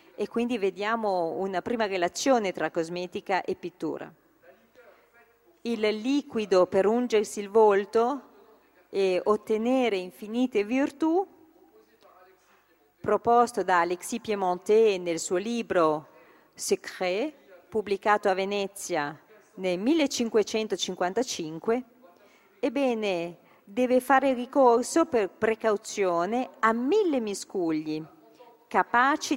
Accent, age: native, 40-59